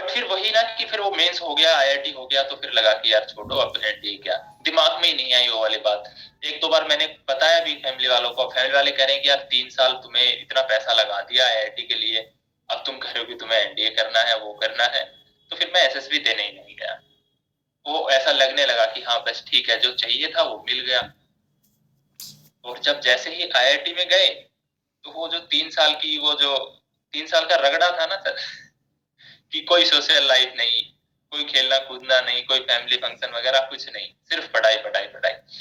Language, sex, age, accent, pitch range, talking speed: Hindi, male, 20-39, native, 125-155 Hz, 150 wpm